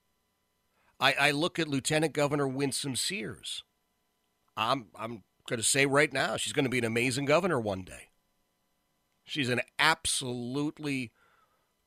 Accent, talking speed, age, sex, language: American, 130 wpm, 40-59, male, English